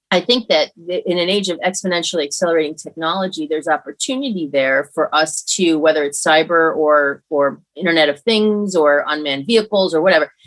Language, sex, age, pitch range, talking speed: English, female, 30-49, 155-190 Hz, 165 wpm